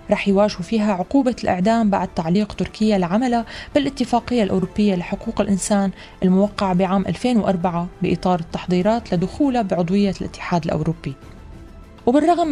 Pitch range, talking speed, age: 185-230 Hz, 110 wpm, 20-39